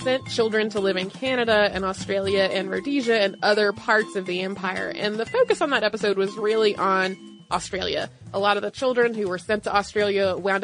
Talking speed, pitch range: 210 wpm, 195-235 Hz